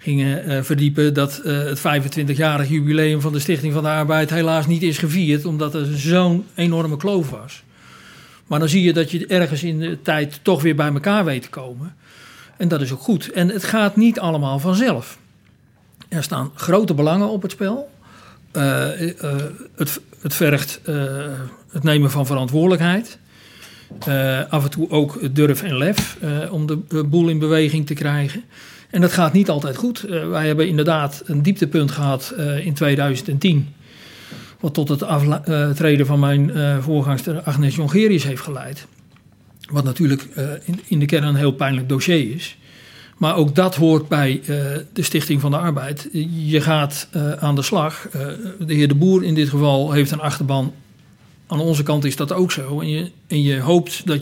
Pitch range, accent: 145-170 Hz, Dutch